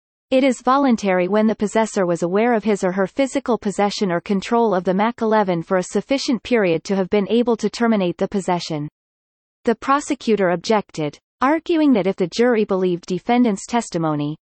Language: English